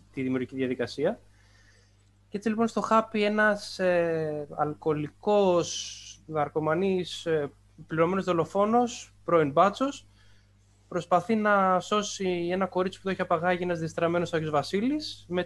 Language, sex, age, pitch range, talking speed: Greek, male, 20-39, 110-185 Hz, 120 wpm